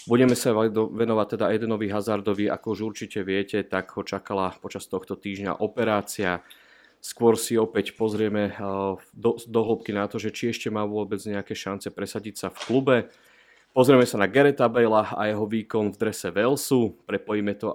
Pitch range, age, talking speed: 100-110 Hz, 30-49, 165 wpm